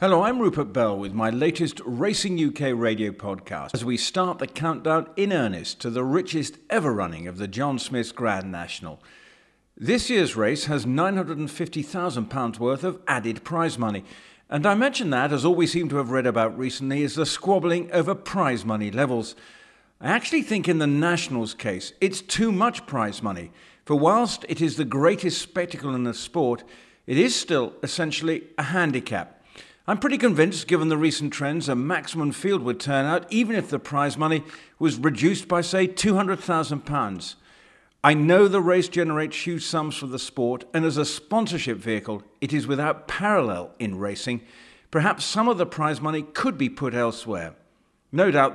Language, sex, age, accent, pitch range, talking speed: English, male, 50-69, British, 120-175 Hz, 175 wpm